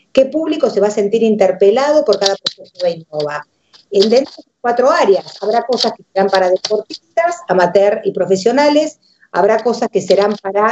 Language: Spanish